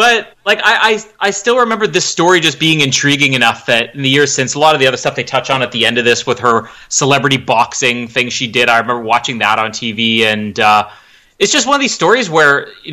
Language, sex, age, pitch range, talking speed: English, male, 30-49, 125-160 Hz, 255 wpm